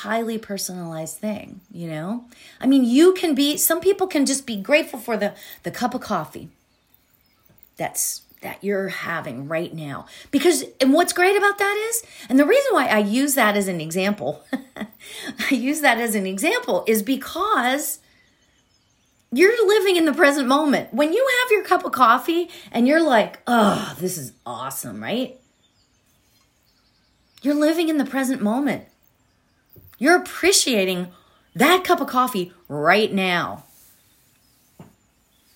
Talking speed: 150 wpm